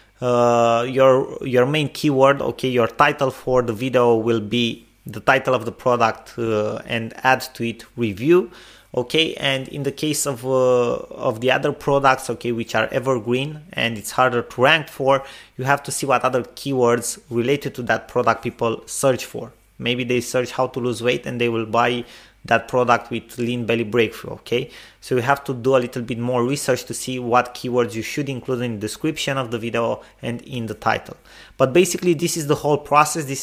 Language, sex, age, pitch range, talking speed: English, male, 20-39, 120-145 Hz, 200 wpm